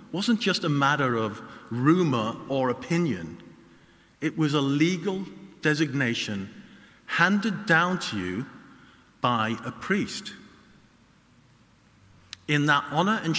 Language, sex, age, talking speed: English, male, 50-69, 110 wpm